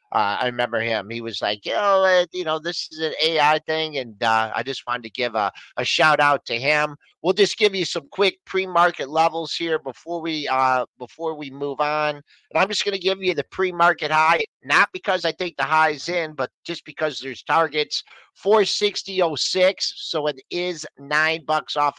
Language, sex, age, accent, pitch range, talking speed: English, male, 50-69, American, 135-175 Hz, 200 wpm